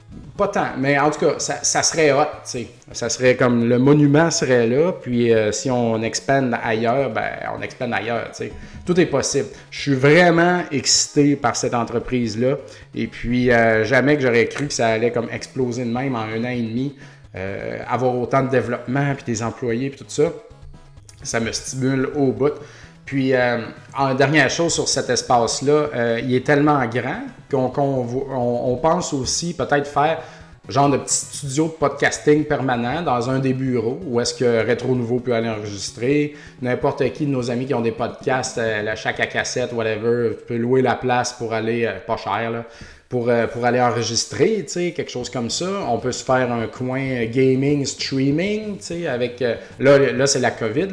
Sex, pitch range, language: male, 120-145 Hz, French